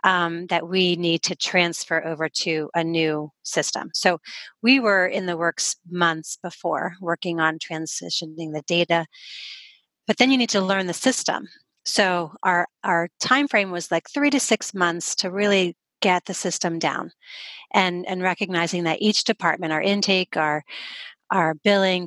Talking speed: 160 wpm